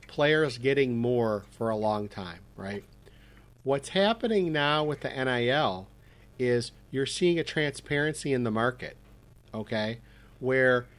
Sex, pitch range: male, 115-155 Hz